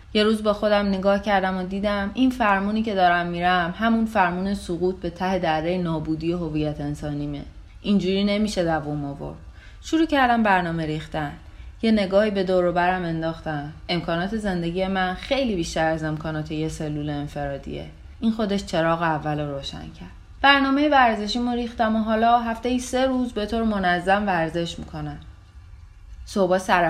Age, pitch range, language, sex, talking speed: 30-49, 170-235 Hz, Persian, female, 150 wpm